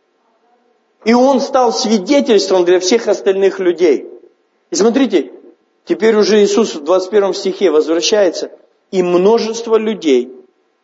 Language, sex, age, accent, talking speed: Russian, male, 40-59, native, 110 wpm